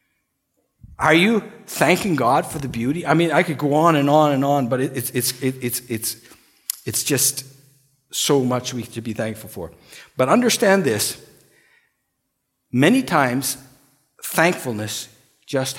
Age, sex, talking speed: 50-69, male, 145 wpm